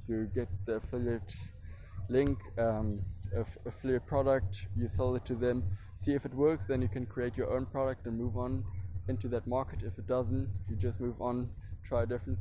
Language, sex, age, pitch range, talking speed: English, male, 20-39, 95-125 Hz, 195 wpm